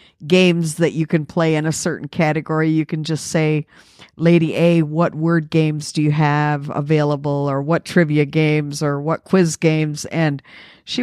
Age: 50-69